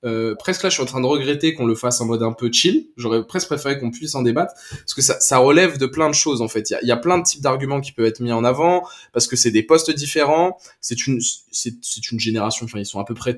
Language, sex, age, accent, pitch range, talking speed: French, male, 20-39, French, 120-150 Hz, 300 wpm